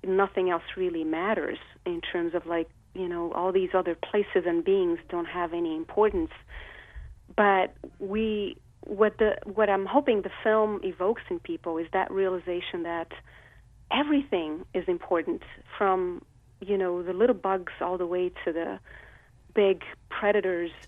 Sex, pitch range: female, 180-260 Hz